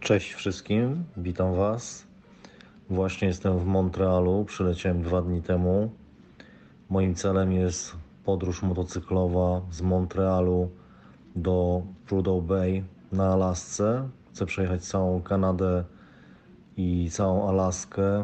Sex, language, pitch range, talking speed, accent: male, Polish, 90-95 Hz, 100 wpm, native